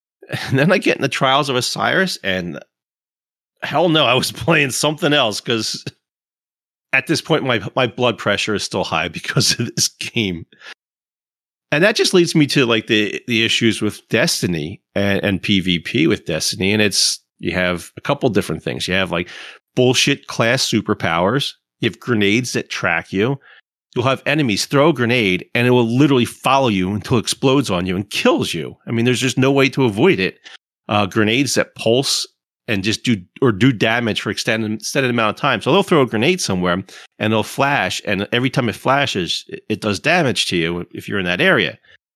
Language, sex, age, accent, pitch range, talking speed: English, male, 40-59, American, 100-135 Hz, 200 wpm